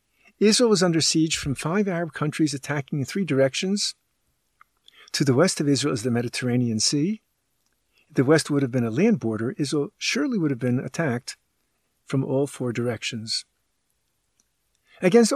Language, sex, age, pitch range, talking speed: English, male, 50-69, 135-195 Hz, 155 wpm